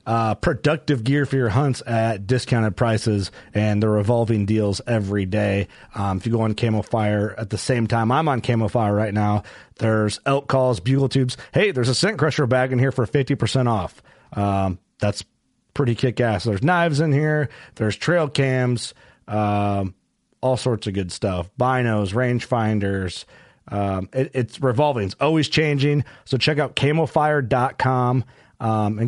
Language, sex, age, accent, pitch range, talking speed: English, male, 30-49, American, 110-140 Hz, 165 wpm